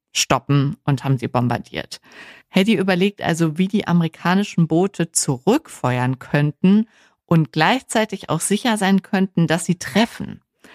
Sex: female